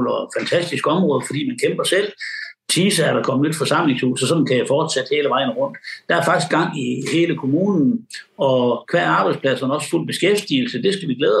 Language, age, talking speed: Danish, 60-79, 205 wpm